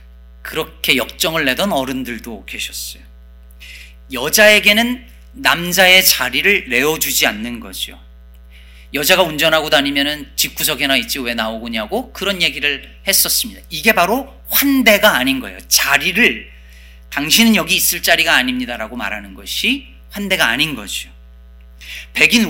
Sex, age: male, 40-59